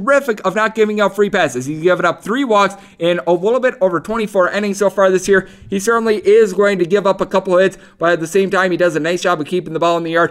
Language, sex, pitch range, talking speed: English, male, 175-210 Hz, 290 wpm